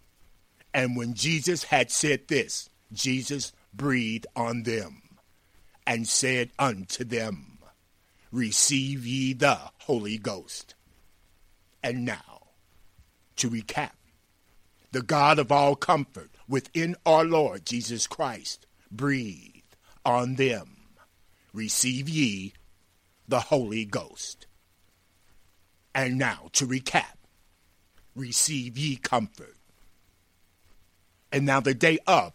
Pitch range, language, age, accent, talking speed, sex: 90-130 Hz, English, 60-79, American, 100 wpm, male